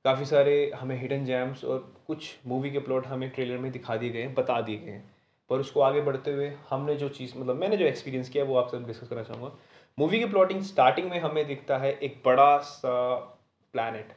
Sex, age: male, 20-39